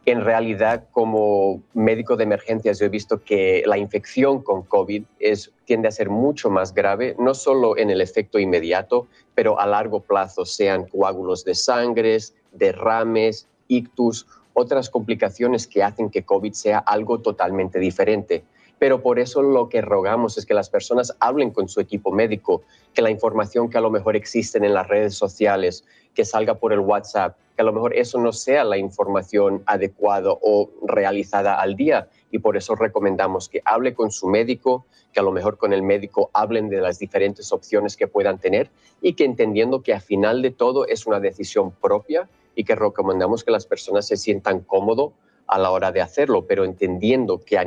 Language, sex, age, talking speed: Spanish, male, 30-49, 185 wpm